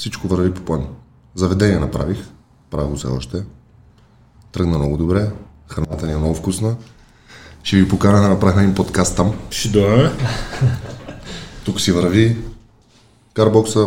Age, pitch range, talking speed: 20-39, 90-115 Hz, 120 wpm